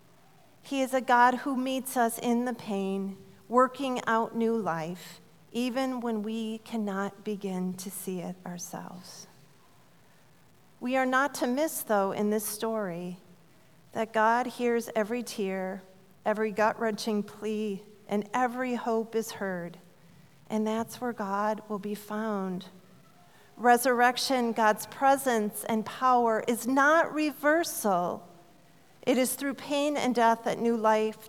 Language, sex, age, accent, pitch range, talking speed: English, female, 40-59, American, 190-240 Hz, 130 wpm